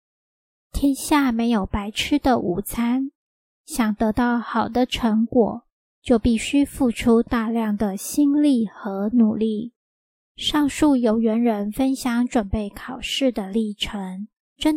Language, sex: Chinese, male